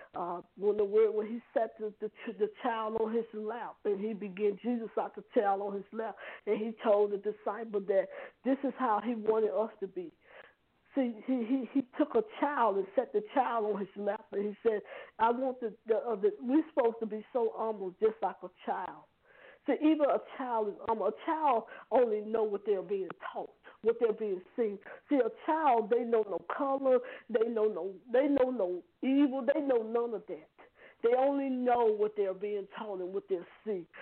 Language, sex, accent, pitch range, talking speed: English, female, American, 210-270 Hz, 210 wpm